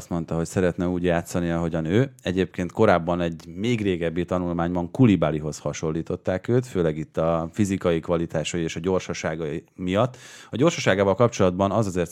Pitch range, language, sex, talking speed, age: 85-110 Hz, Hungarian, male, 155 wpm, 30-49